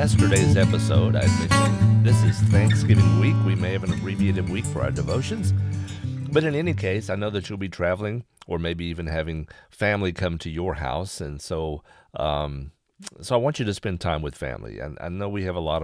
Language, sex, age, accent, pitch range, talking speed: English, male, 50-69, American, 80-110 Hz, 210 wpm